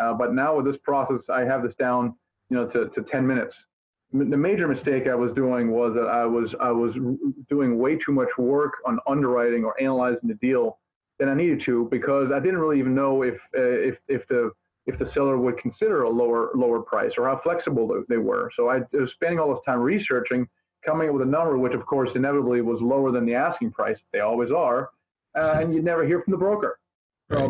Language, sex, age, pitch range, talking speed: English, male, 30-49, 120-145 Hz, 235 wpm